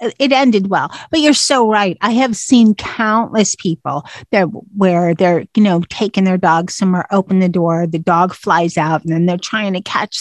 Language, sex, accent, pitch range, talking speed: English, female, American, 185-240 Hz, 200 wpm